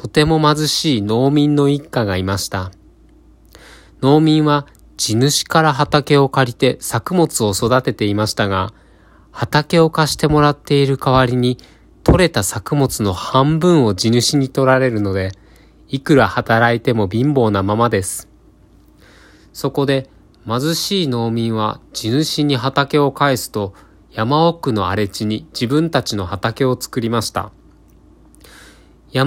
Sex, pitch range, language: male, 105-145 Hz, Japanese